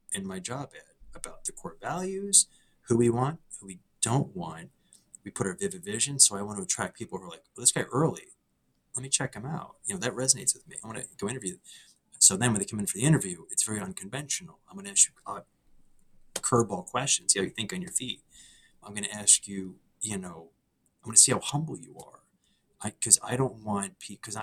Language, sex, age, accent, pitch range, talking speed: English, male, 30-49, American, 100-160 Hz, 240 wpm